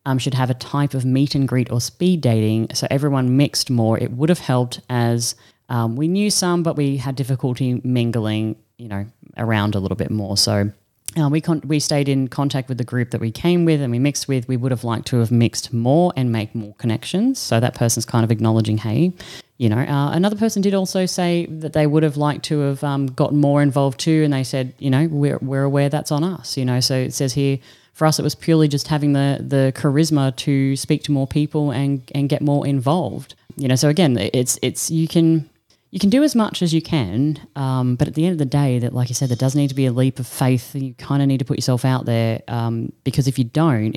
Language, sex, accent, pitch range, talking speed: English, female, Australian, 120-150 Hz, 250 wpm